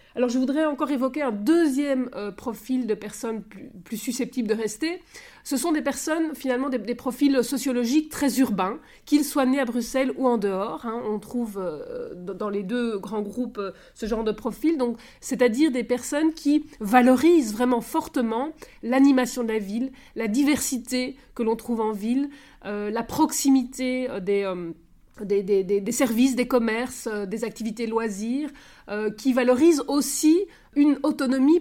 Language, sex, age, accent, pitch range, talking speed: French, female, 30-49, French, 225-280 Hz, 165 wpm